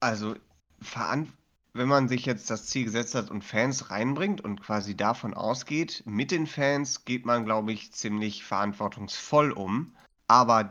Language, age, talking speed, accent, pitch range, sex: German, 30-49, 150 wpm, German, 105-125 Hz, male